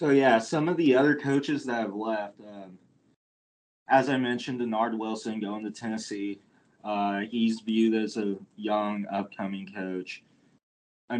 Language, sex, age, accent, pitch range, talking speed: English, male, 20-39, American, 100-115 Hz, 150 wpm